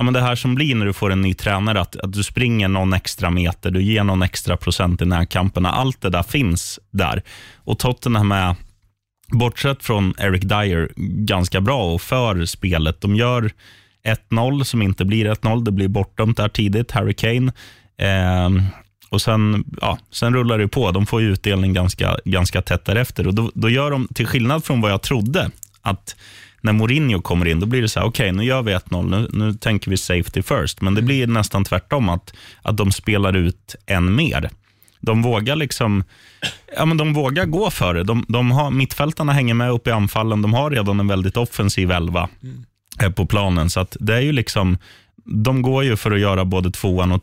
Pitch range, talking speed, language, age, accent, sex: 95-120 Hz, 205 wpm, Swedish, 20-39, native, male